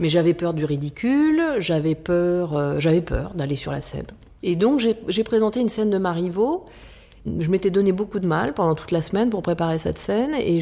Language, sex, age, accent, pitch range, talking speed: French, female, 30-49, French, 165-210 Hz, 215 wpm